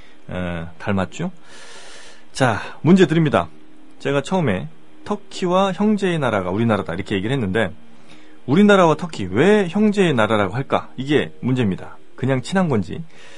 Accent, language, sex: native, Korean, male